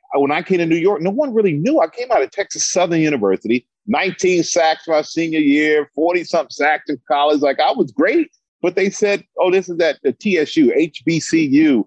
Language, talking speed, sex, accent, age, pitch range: English, 200 wpm, male, American, 40-59, 140-210 Hz